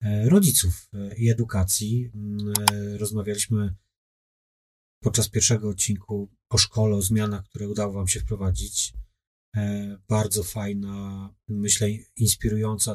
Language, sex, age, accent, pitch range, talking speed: Polish, male, 30-49, native, 105-120 Hz, 95 wpm